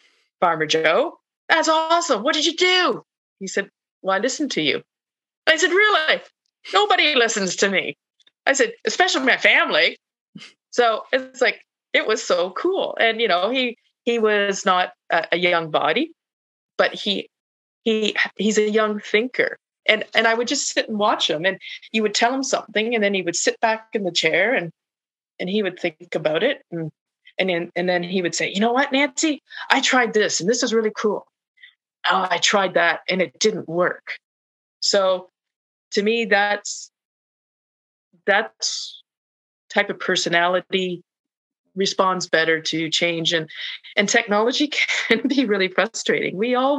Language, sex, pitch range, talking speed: English, female, 170-240 Hz, 170 wpm